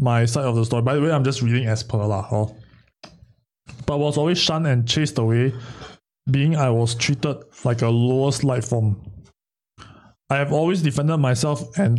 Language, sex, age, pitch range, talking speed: English, male, 20-39, 120-140 Hz, 190 wpm